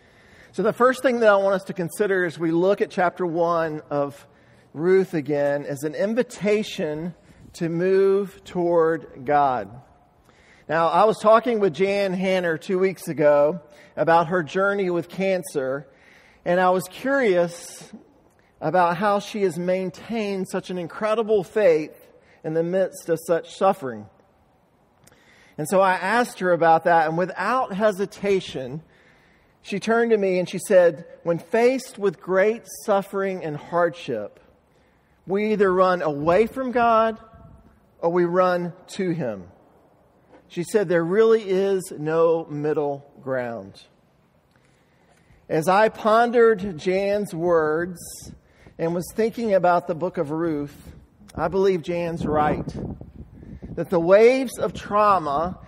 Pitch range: 165-200 Hz